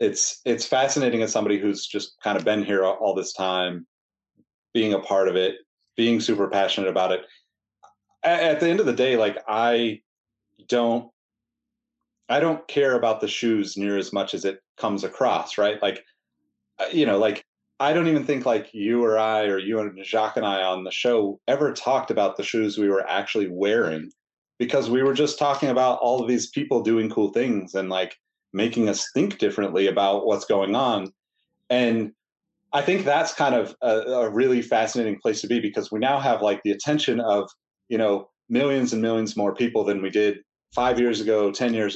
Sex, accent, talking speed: male, American, 195 wpm